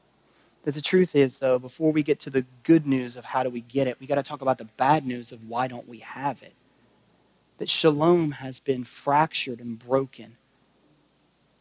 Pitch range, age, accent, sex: 135-160 Hz, 30-49, American, male